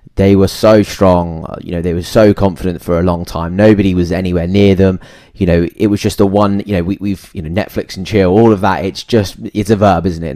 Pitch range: 90-105 Hz